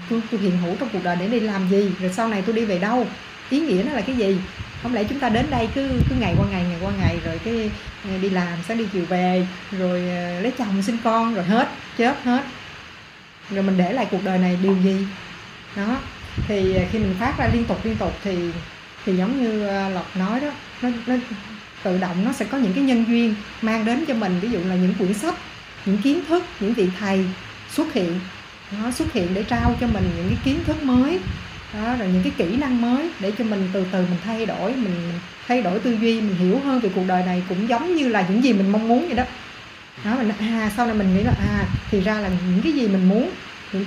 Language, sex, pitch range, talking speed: Vietnamese, female, 185-240 Hz, 245 wpm